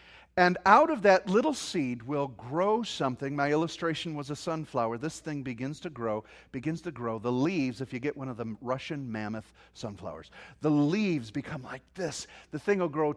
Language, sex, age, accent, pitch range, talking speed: English, male, 40-59, American, 160-230 Hz, 190 wpm